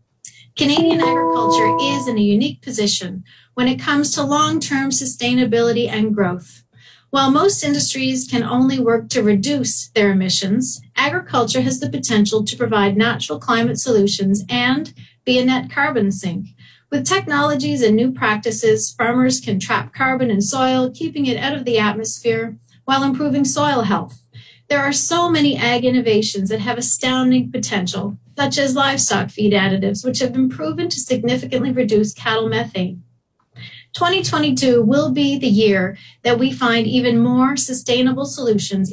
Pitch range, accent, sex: 200-265 Hz, American, female